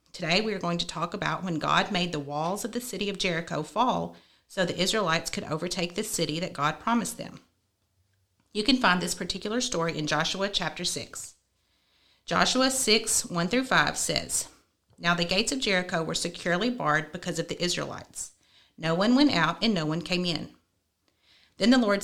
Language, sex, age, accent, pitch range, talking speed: English, female, 40-59, American, 160-200 Hz, 180 wpm